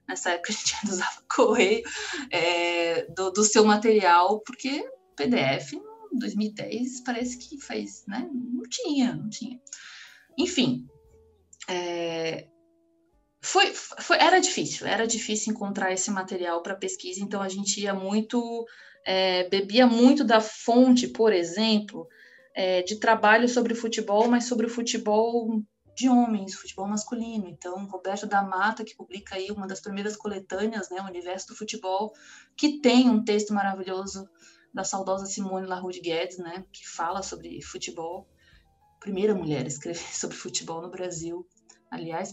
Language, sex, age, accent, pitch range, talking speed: Portuguese, female, 20-39, Brazilian, 185-240 Hz, 145 wpm